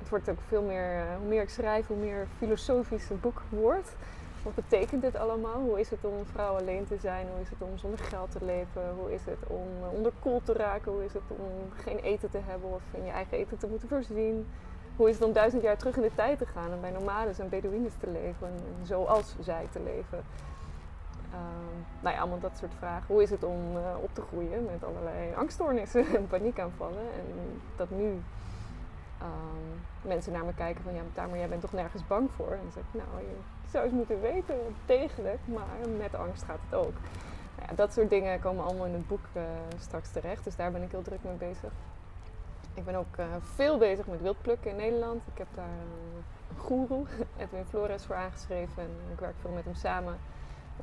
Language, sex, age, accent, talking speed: Dutch, female, 20-39, Dutch, 215 wpm